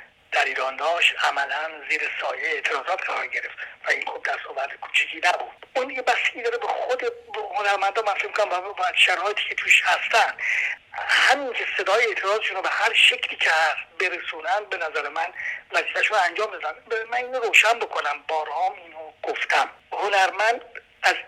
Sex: male